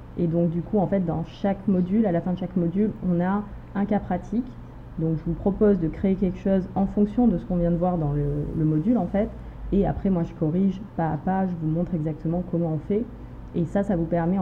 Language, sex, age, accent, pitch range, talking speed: French, female, 20-39, French, 160-185 Hz, 260 wpm